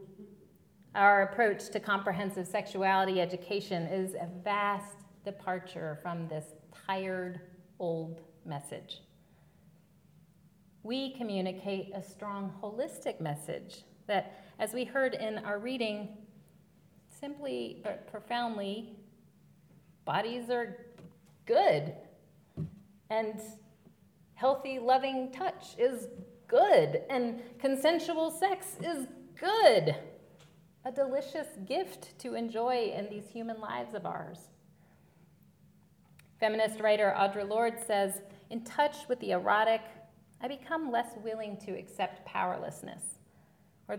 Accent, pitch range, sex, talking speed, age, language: American, 185-230 Hz, female, 100 wpm, 40-59, English